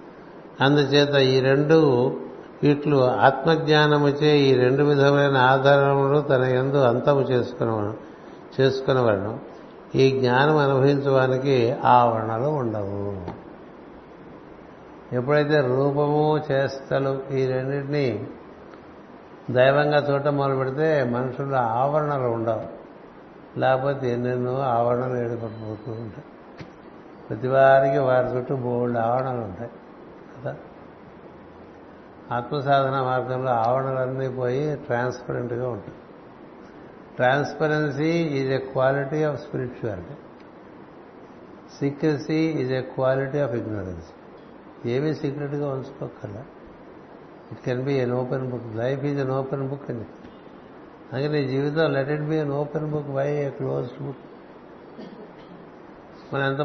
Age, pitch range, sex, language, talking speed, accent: 60-79, 125-145 Hz, male, Telugu, 100 wpm, native